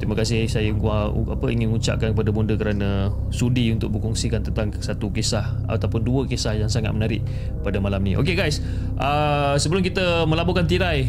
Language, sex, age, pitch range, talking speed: Malay, male, 20-39, 110-145 Hz, 160 wpm